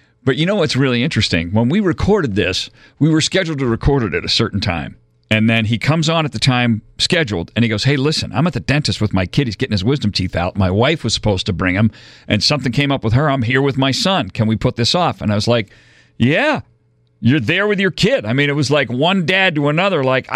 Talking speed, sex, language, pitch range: 265 wpm, male, English, 110-145 Hz